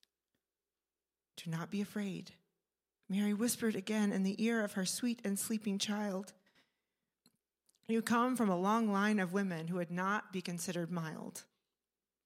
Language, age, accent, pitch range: English, 40-59, American, 185-230 Hz